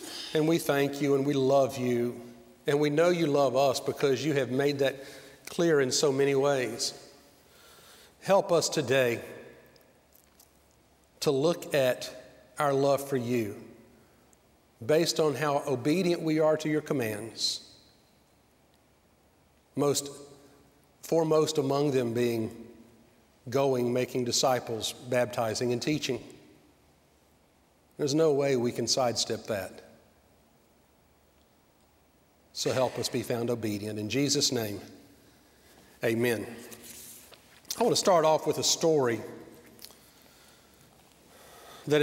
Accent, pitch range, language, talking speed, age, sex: American, 120-155 Hz, English, 115 wpm, 40-59, male